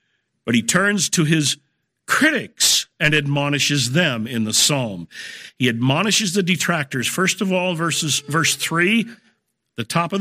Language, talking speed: English, 145 wpm